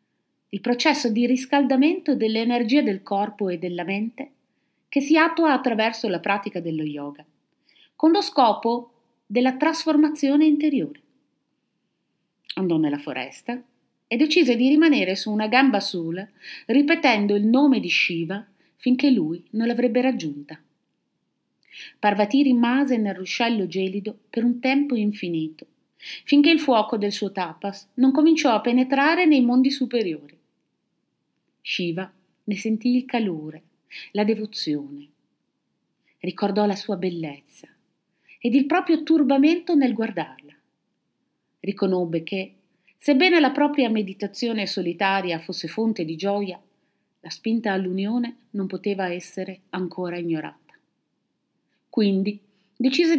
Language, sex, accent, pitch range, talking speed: Italian, female, native, 190-270 Hz, 120 wpm